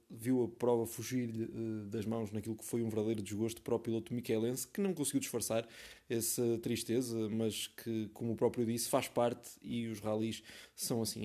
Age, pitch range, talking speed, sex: 20-39, 115-135 Hz, 185 wpm, male